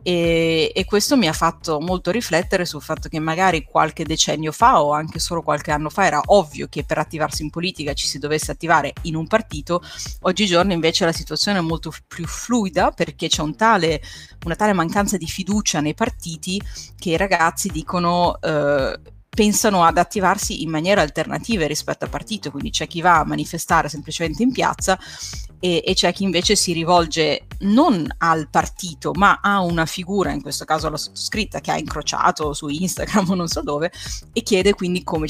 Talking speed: 180 wpm